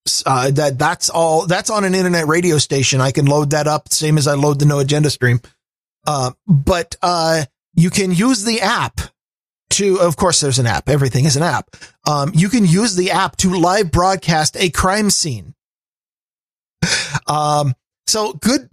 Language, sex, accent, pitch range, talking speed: English, male, American, 140-185 Hz, 180 wpm